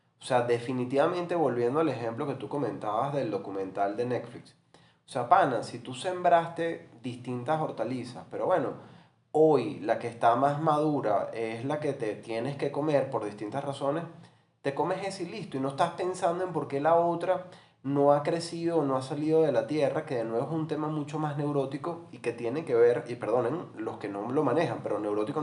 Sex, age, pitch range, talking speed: male, 20-39, 120-160 Hz, 205 wpm